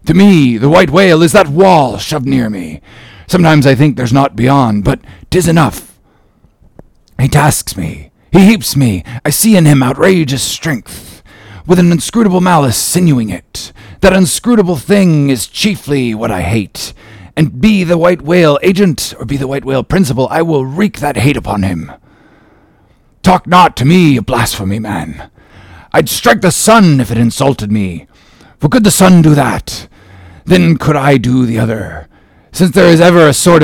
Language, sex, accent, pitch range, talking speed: English, male, American, 110-175 Hz, 175 wpm